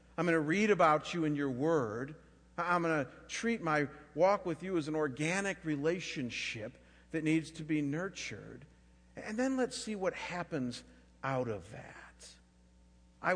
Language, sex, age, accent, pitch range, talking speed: English, male, 50-69, American, 115-190 Hz, 160 wpm